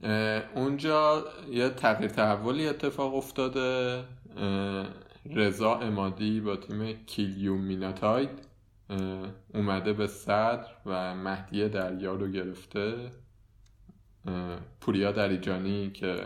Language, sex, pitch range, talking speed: Persian, male, 95-110 Hz, 80 wpm